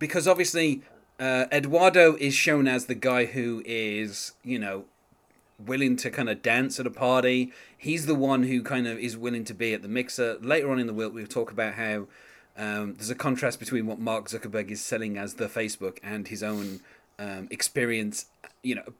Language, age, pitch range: English, 30-49, 110-135 Hz